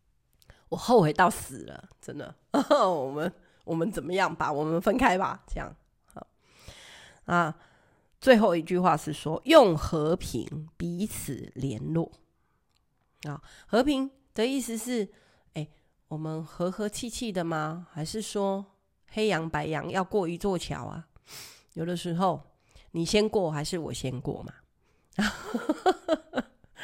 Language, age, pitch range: Chinese, 30-49, 155-215 Hz